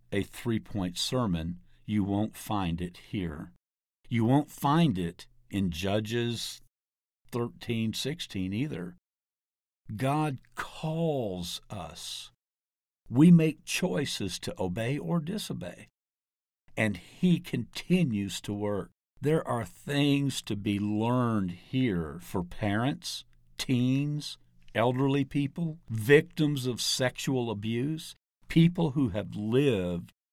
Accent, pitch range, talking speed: American, 90-135 Hz, 105 wpm